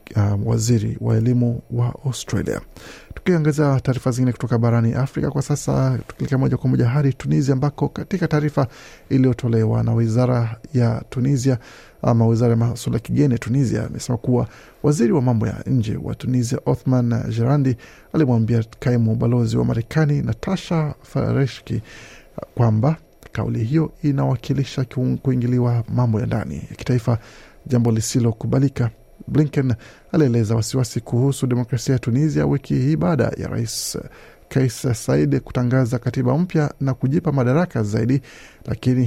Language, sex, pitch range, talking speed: Swahili, male, 115-140 Hz, 125 wpm